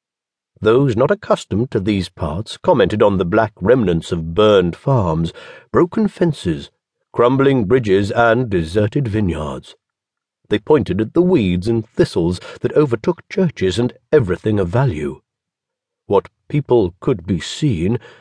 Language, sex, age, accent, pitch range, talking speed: English, male, 50-69, British, 100-140 Hz, 130 wpm